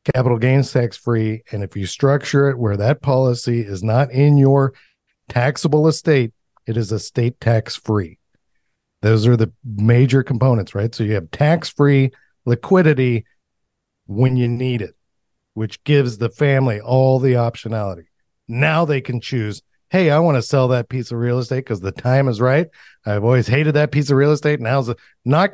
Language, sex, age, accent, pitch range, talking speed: English, male, 50-69, American, 115-140 Hz, 170 wpm